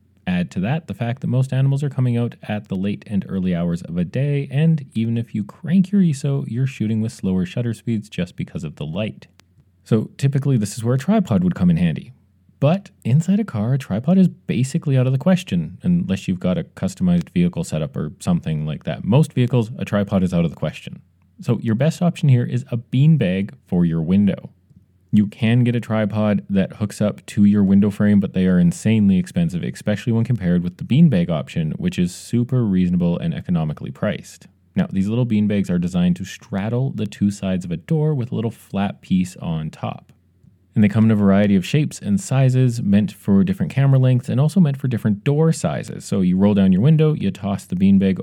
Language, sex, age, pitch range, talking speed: English, male, 30-49, 100-160 Hz, 220 wpm